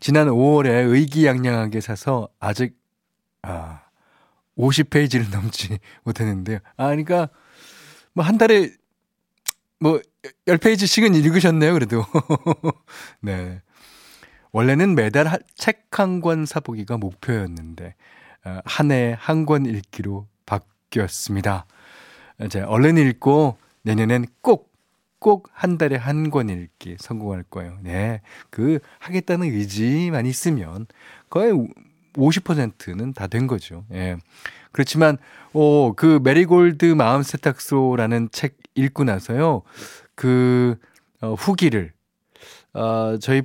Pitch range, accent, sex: 105-155 Hz, native, male